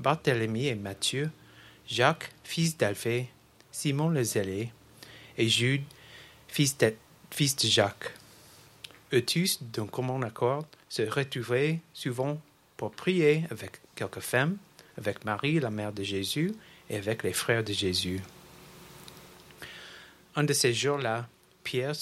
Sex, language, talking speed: male, English, 125 wpm